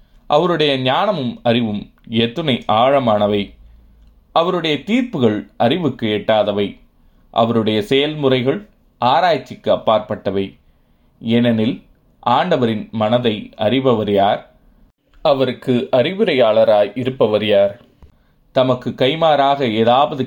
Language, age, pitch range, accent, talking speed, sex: Tamil, 20-39, 100-125 Hz, native, 75 wpm, male